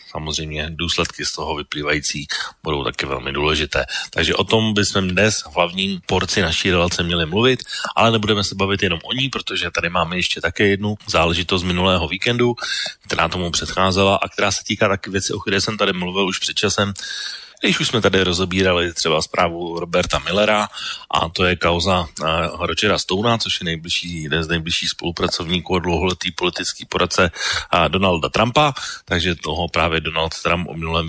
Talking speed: 175 wpm